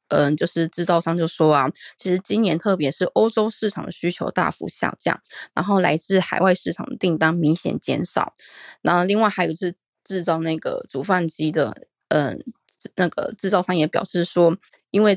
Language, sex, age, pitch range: Chinese, female, 20-39, 165-210 Hz